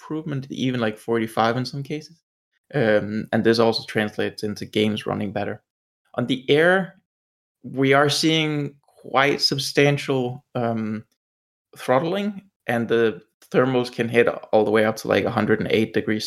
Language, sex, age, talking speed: English, male, 20-39, 145 wpm